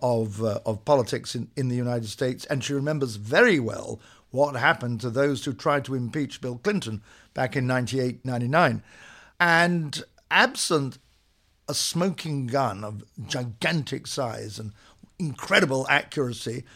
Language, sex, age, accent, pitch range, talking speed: English, male, 50-69, British, 120-155 Hz, 140 wpm